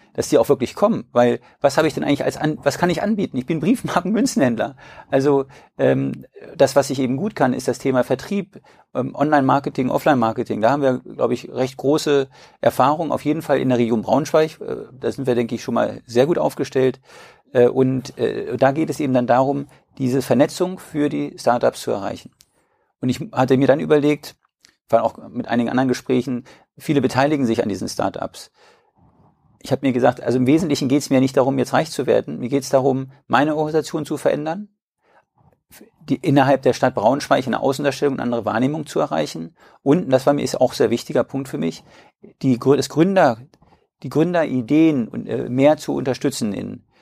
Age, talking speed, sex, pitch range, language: 50-69, 195 wpm, male, 125-150 Hz, German